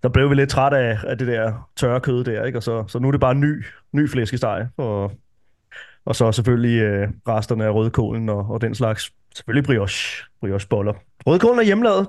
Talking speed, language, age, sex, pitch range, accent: 210 wpm, Danish, 30-49, male, 120-160 Hz, native